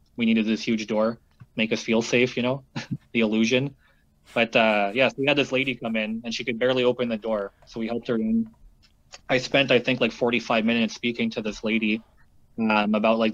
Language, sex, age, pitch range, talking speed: English, male, 20-39, 110-120 Hz, 230 wpm